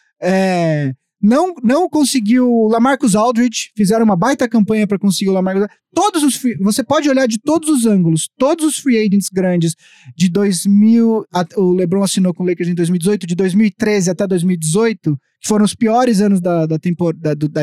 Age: 20-39